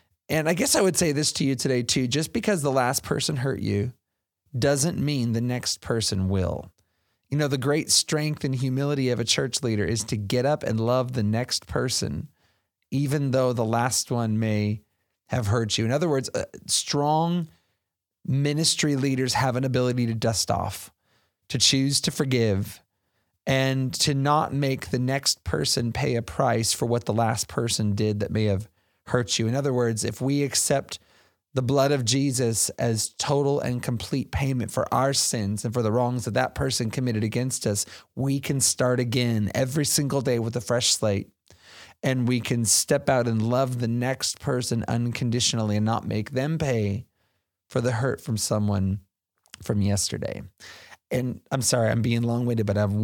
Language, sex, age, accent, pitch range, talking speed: English, male, 30-49, American, 105-135 Hz, 180 wpm